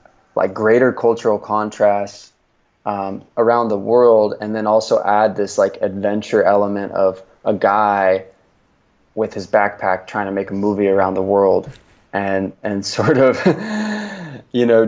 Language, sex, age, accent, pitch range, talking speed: English, male, 20-39, American, 95-110 Hz, 145 wpm